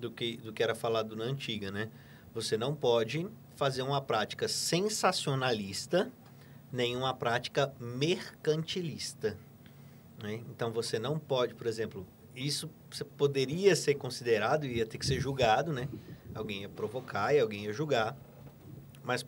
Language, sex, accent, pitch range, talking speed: Portuguese, male, Brazilian, 130-170 Hz, 140 wpm